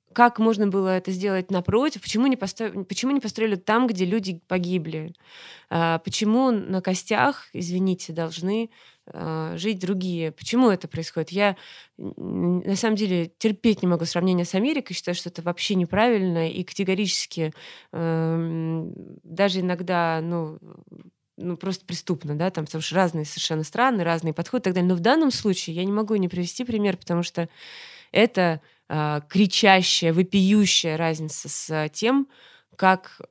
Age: 20-39